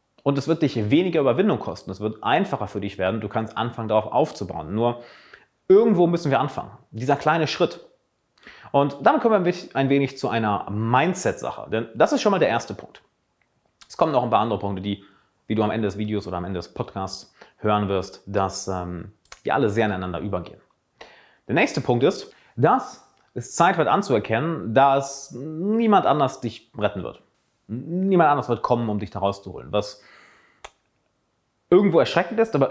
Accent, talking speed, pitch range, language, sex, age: German, 180 wpm, 105-135 Hz, German, male, 30-49